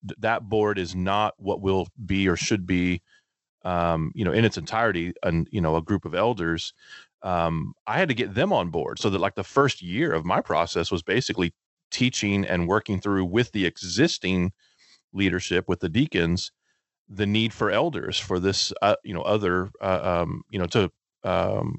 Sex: male